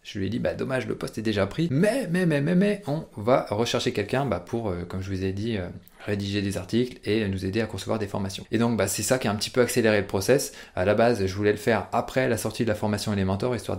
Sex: male